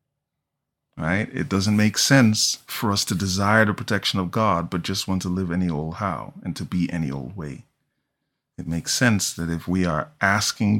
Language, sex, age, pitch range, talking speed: English, male, 30-49, 95-125 Hz, 195 wpm